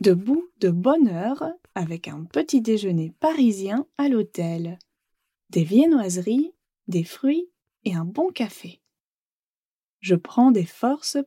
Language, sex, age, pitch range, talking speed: English, female, 20-39, 190-275 Hz, 120 wpm